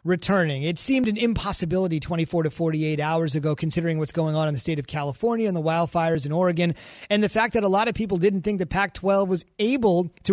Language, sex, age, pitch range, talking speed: English, male, 30-49, 170-210 Hz, 225 wpm